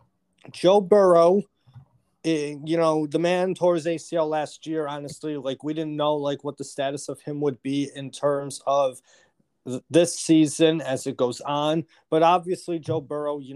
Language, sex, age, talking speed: English, male, 30-49, 165 wpm